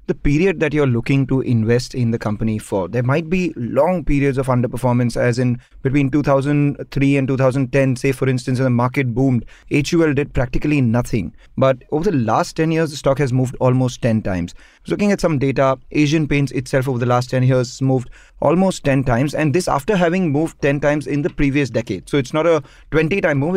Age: 30-49